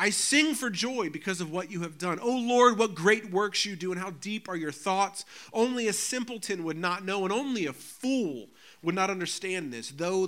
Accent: American